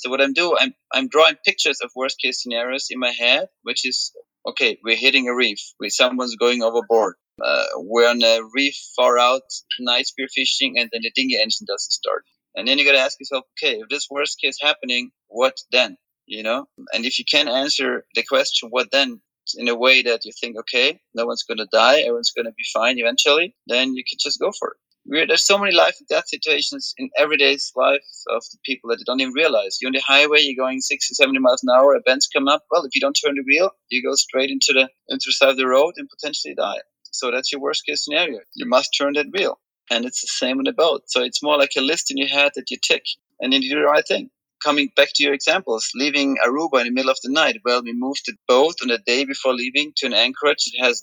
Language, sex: English, male